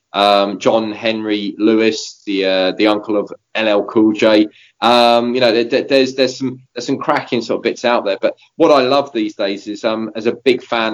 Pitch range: 105-115 Hz